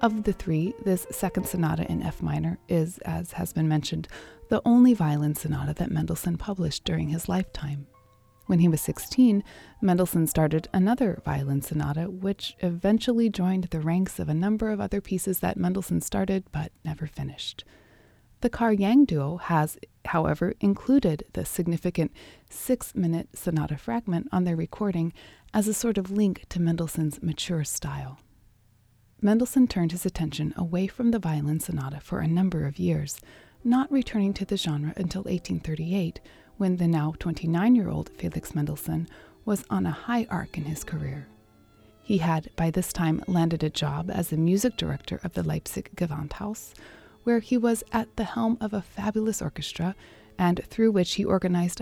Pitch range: 155-200 Hz